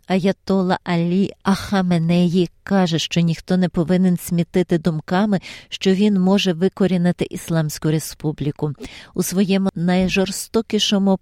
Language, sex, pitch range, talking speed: Ukrainian, female, 165-190 Hz, 100 wpm